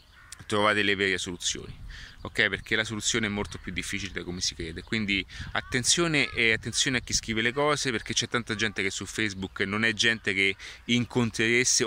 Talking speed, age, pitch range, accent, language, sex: 185 wpm, 30-49, 100-120 Hz, native, Italian, male